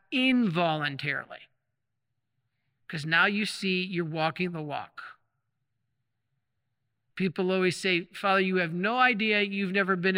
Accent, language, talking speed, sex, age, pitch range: American, English, 120 wpm, male, 50-69, 125-200 Hz